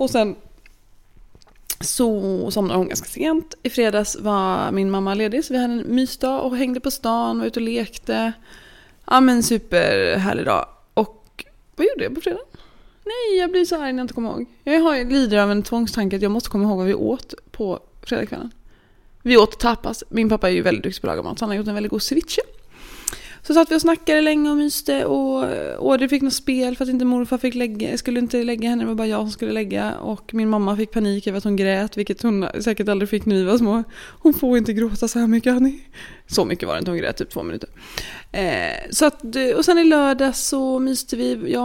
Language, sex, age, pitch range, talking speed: English, female, 20-39, 210-265 Hz, 230 wpm